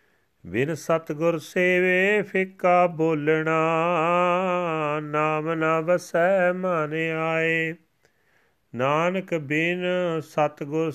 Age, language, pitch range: 40-59, Punjabi, 160-180 Hz